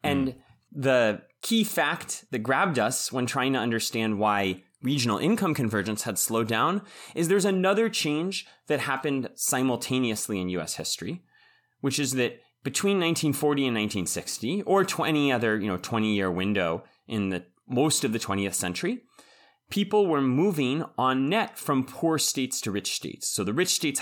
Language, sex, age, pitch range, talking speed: English, male, 30-49, 105-155 Hz, 160 wpm